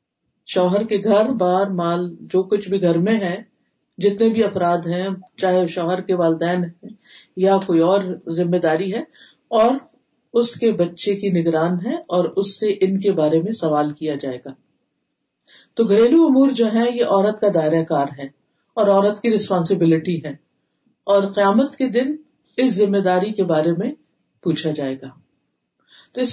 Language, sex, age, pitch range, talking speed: Urdu, female, 50-69, 165-215 Hz, 170 wpm